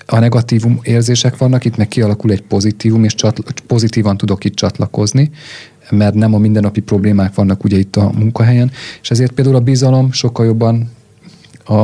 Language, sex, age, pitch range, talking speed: Hungarian, male, 30-49, 100-120 Hz, 165 wpm